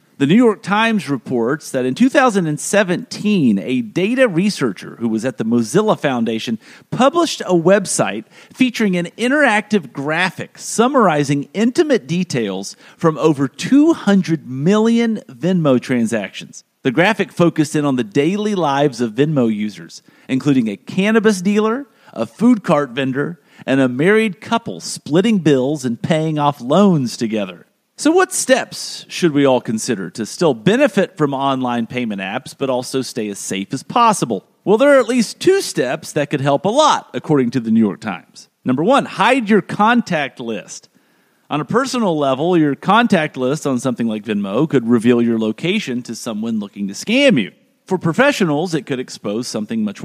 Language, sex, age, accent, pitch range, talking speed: English, male, 40-59, American, 130-220 Hz, 165 wpm